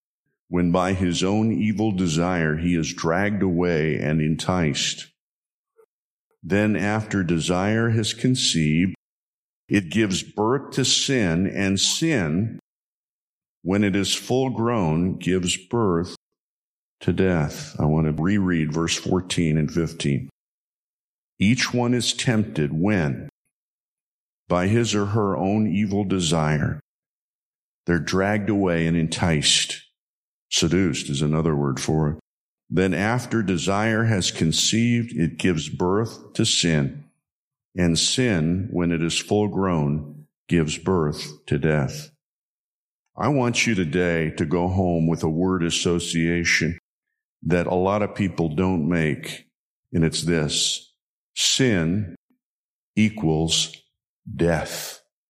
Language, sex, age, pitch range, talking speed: English, male, 50-69, 80-105 Hz, 120 wpm